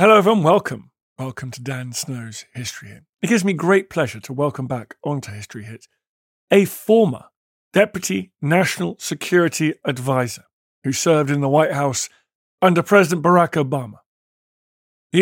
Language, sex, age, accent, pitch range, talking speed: English, male, 50-69, British, 135-195 Hz, 145 wpm